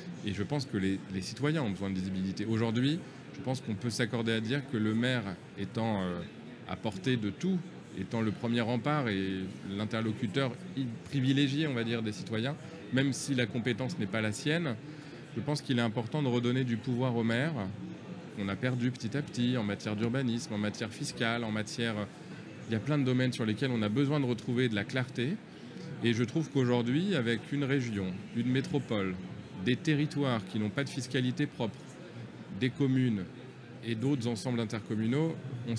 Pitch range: 105-135 Hz